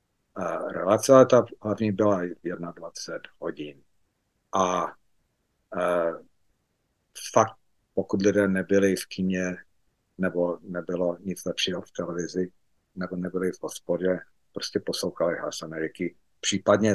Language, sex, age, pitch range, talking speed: Slovak, male, 50-69, 95-105 Hz, 105 wpm